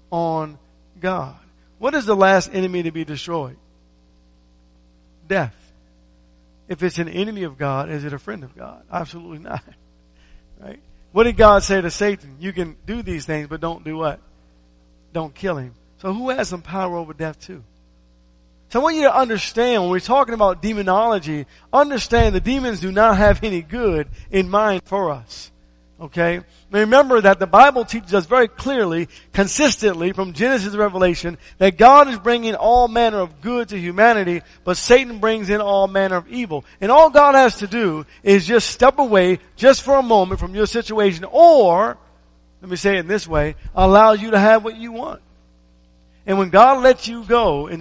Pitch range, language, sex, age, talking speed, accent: 135-220 Hz, English, male, 50-69, 180 wpm, American